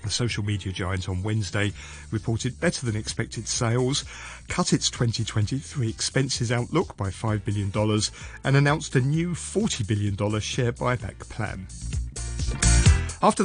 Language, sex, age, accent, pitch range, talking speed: English, male, 40-59, British, 105-135 Hz, 130 wpm